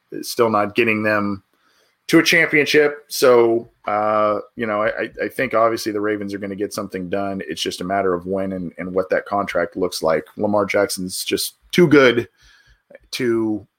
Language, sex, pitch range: English, male, 105-130 Hz